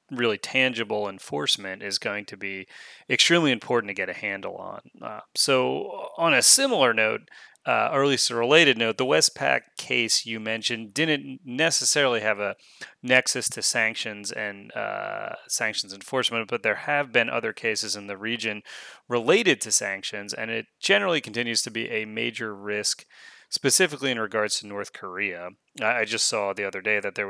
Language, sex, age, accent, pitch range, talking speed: English, male, 30-49, American, 105-130 Hz, 170 wpm